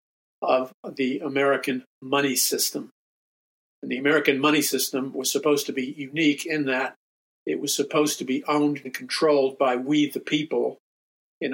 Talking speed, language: 155 wpm, English